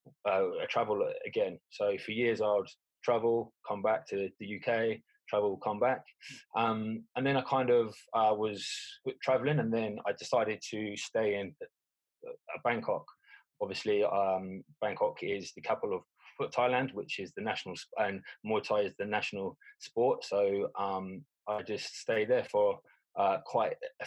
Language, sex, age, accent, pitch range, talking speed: English, male, 20-39, British, 105-140 Hz, 160 wpm